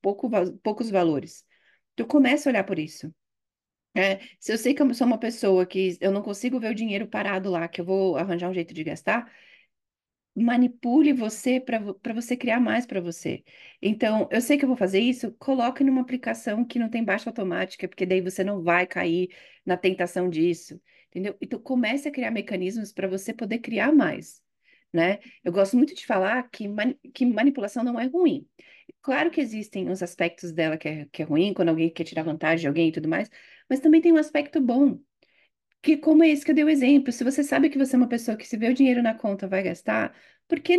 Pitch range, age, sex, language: 185-255 Hz, 40-59, female, Portuguese